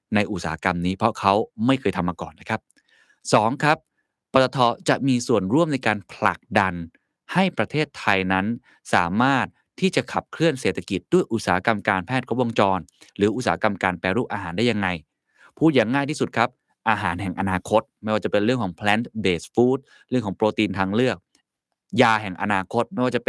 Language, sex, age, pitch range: Thai, male, 20-39, 100-135 Hz